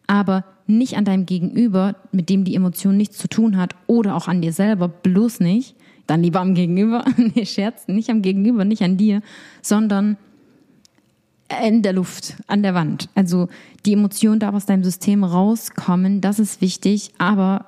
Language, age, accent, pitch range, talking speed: English, 20-39, German, 175-205 Hz, 175 wpm